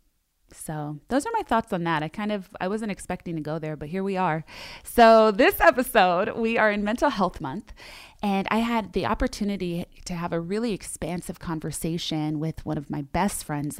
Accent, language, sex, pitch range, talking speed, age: American, English, female, 155-180 Hz, 200 wpm, 20-39